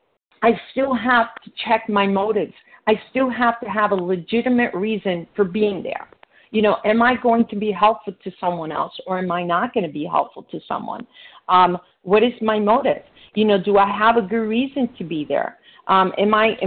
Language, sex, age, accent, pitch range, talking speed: English, female, 40-59, American, 200-230 Hz, 210 wpm